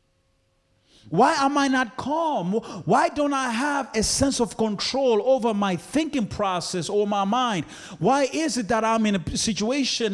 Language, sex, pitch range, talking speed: English, male, 145-220 Hz, 165 wpm